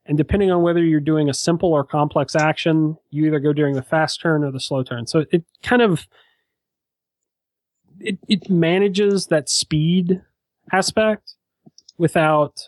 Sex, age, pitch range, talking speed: male, 30-49, 130-175 Hz, 155 wpm